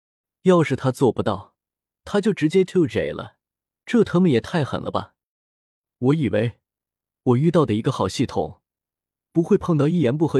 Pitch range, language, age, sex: 105-165 Hz, Chinese, 20-39, male